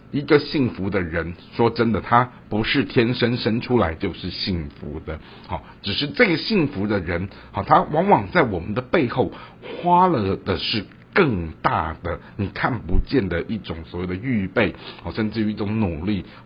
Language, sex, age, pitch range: Chinese, male, 60-79, 90-120 Hz